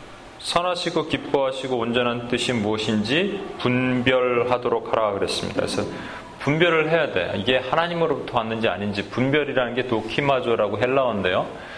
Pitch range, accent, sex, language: 110-155 Hz, native, male, Korean